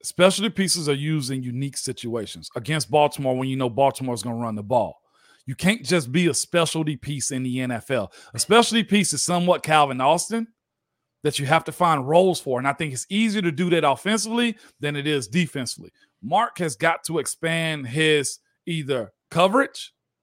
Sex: male